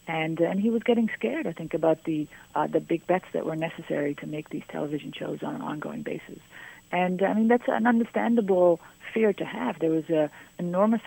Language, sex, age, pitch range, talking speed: English, female, 40-59, 155-180 Hz, 215 wpm